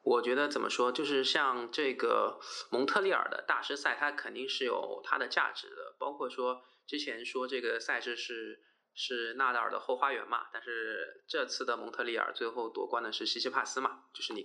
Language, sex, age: Chinese, male, 20-39